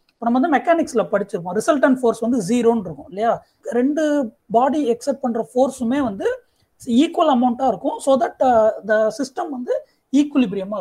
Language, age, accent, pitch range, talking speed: Tamil, 30-49, native, 220-290 Hz, 145 wpm